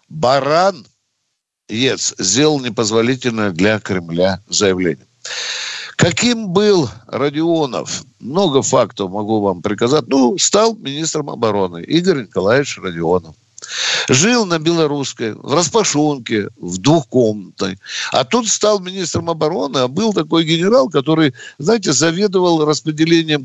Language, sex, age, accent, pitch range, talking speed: Russian, male, 60-79, native, 125-180 Hz, 110 wpm